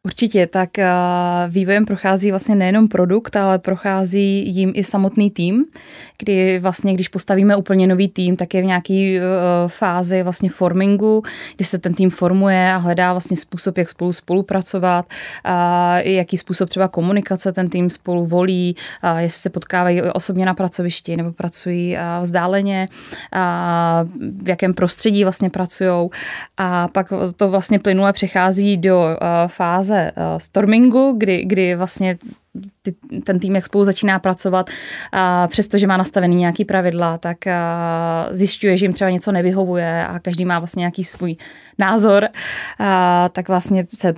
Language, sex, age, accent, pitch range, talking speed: Czech, female, 20-39, native, 175-195 Hz, 145 wpm